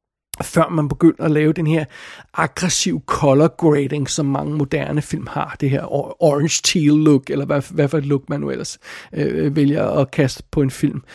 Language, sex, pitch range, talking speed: Danish, male, 145-170 Hz, 185 wpm